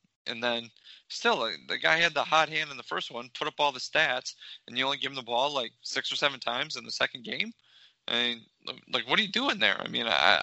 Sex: male